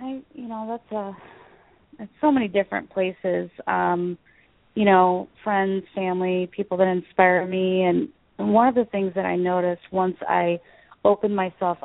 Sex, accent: female, American